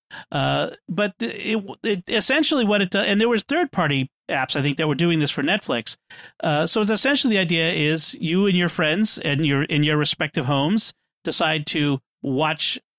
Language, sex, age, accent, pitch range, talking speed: English, male, 40-59, American, 135-180 Hz, 195 wpm